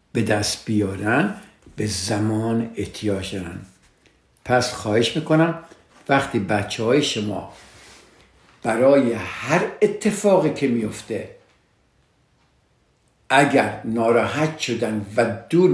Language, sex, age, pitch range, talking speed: Persian, male, 60-79, 115-150 Hz, 90 wpm